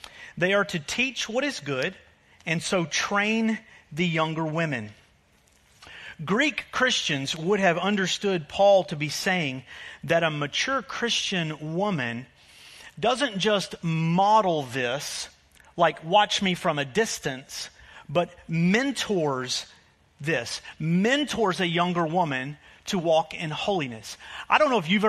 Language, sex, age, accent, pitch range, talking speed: English, male, 40-59, American, 140-205 Hz, 125 wpm